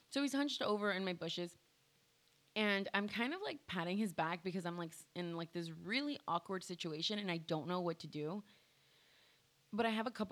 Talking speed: 215 wpm